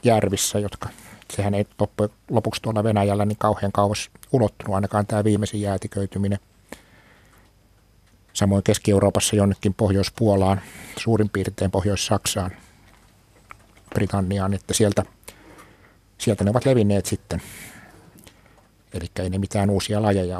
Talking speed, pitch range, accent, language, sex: 110 wpm, 95-105 Hz, native, Finnish, male